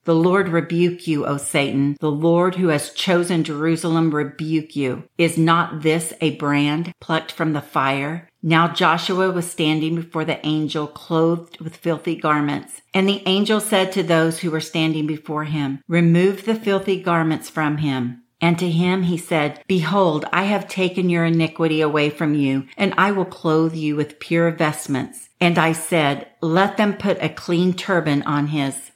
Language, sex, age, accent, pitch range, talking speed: English, female, 50-69, American, 155-190 Hz, 175 wpm